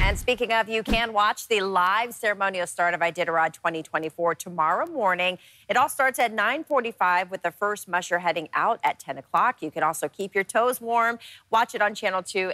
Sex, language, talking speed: female, English, 195 wpm